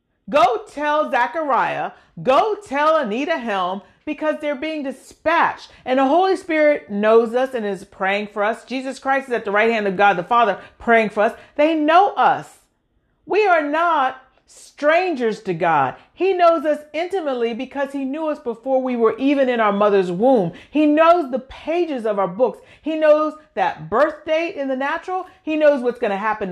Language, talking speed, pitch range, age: English, 185 wpm, 235-320 Hz, 40-59